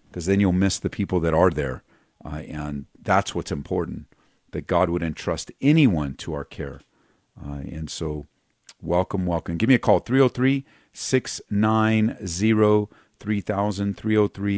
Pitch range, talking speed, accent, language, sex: 80-100 Hz, 130 wpm, American, English, male